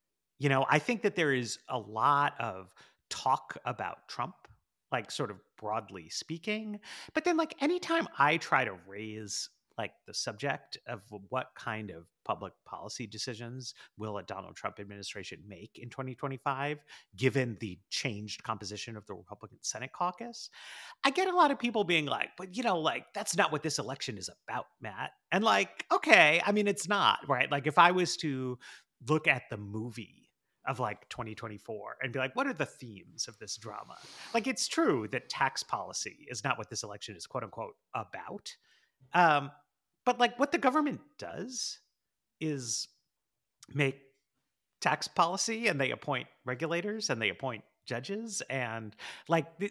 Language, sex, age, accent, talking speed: English, male, 30-49, American, 170 wpm